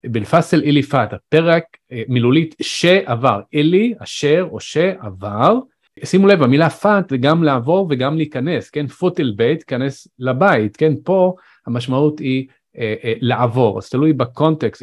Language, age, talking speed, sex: Hebrew, 40-59, 135 wpm, male